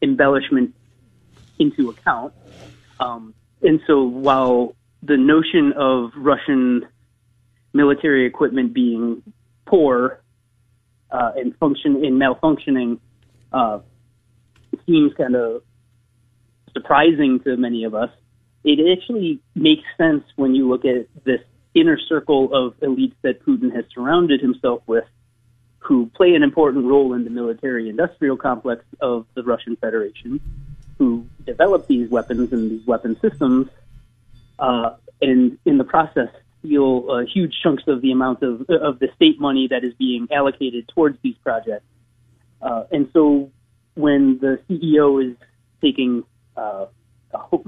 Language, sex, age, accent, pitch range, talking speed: English, male, 30-49, American, 120-145 Hz, 130 wpm